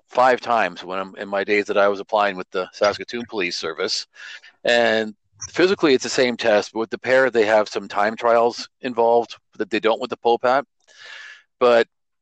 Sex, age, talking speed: male, 40-59, 195 wpm